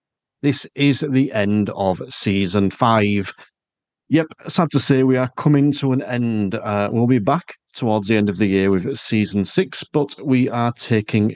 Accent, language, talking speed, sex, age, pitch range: British, English, 180 wpm, male, 40-59, 105-140 Hz